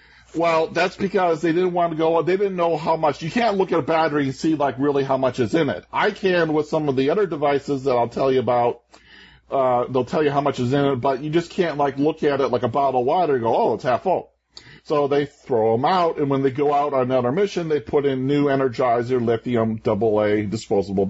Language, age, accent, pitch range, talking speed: English, 40-59, American, 140-180 Hz, 255 wpm